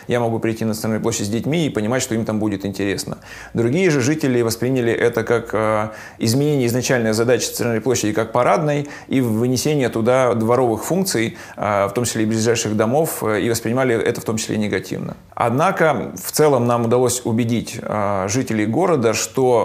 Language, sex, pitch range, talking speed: Russian, male, 110-130 Hz, 170 wpm